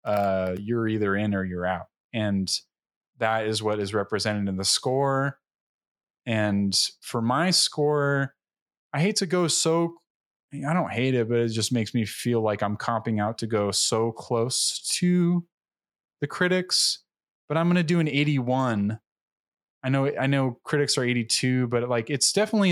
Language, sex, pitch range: English, male, 110-140 Hz